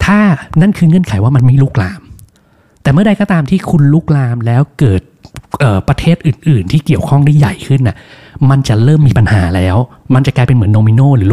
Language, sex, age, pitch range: Thai, male, 20-39, 110-150 Hz